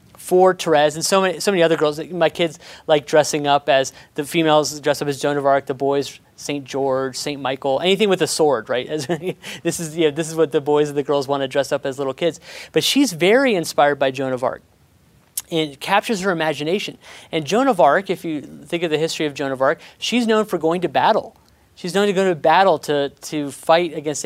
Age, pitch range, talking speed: 30-49, 145-180 Hz, 240 wpm